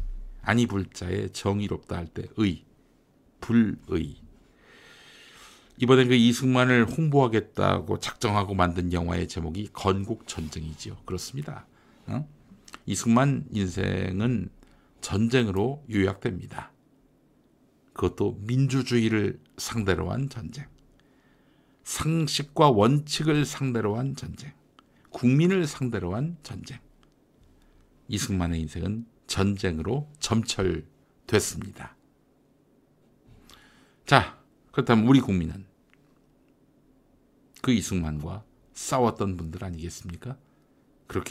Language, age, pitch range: English, 60-79, 95-130 Hz